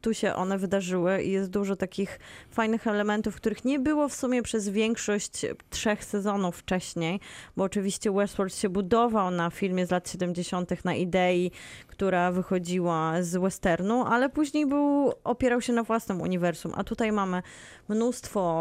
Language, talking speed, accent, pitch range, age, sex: Polish, 155 wpm, native, 175-215 Hz, 20-39, female